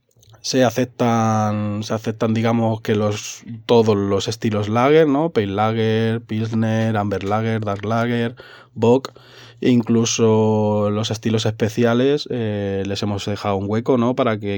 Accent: Spanish